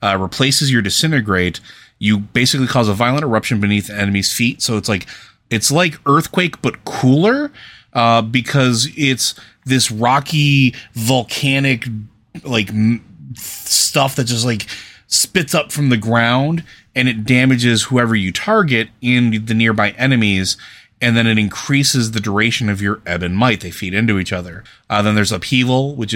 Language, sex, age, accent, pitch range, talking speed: English, male, 30-49, American, 100-120 Hz, 160 wpm